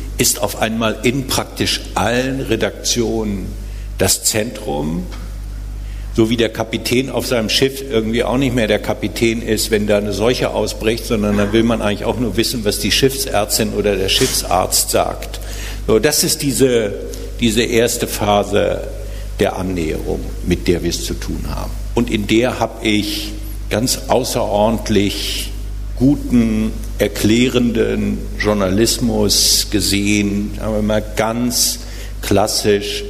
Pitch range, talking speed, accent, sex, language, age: 100-115 Hz, 135 wpm, German, male, German, 60-79